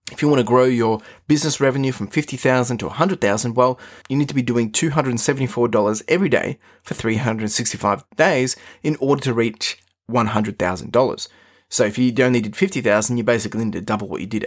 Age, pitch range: 20-39, 110-130 Hz